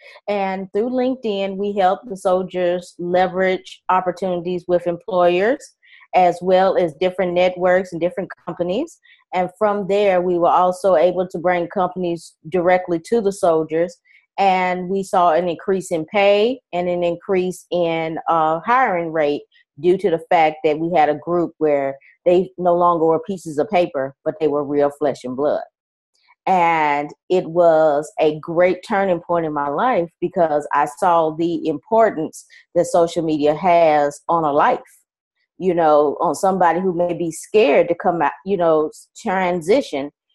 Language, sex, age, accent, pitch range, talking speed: English, female, 30-49, American, 160-185 Hz, 160 wpm